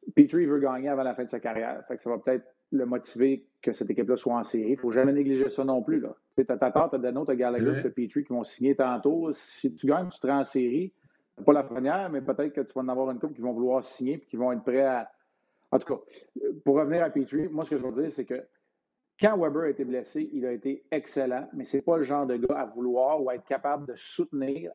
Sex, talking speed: male, 270 wpm